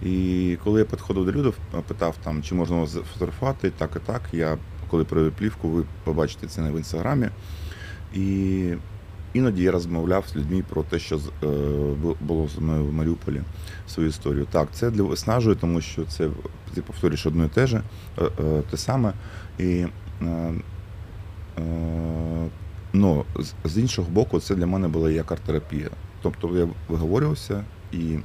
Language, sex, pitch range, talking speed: Ukrainian, male, 80-95 Hz, 145 wpm